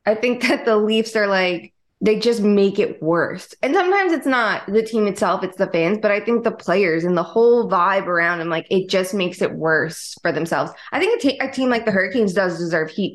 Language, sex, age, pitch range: English, female, 20-39, 175-215 Hz